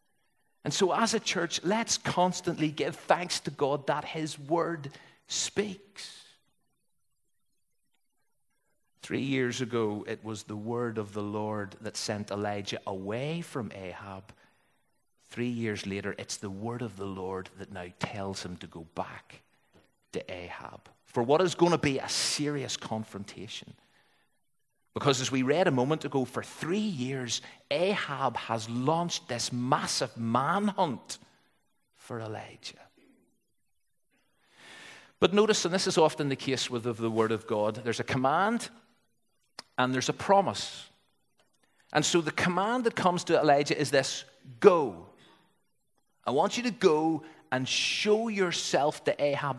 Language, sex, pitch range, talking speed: English, male, 110-170 Hz, 140 wpm